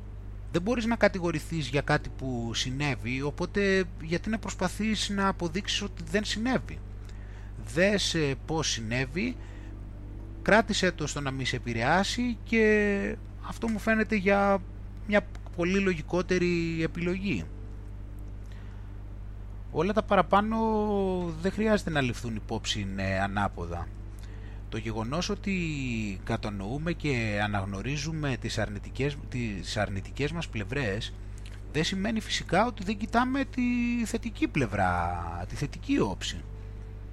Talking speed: 110 wpm